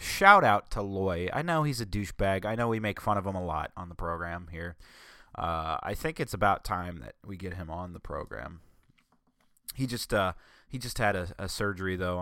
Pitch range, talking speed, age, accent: 90-110 Hz, 220 wpm, 20-39, American